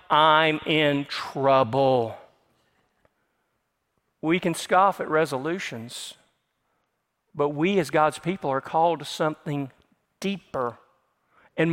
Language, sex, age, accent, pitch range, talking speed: English, male, 50-69, American, 160-215 Hz, 95 wpm